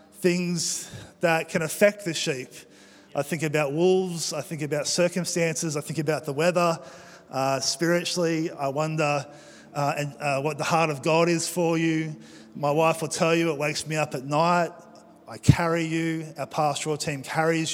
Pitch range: 150-175 Hz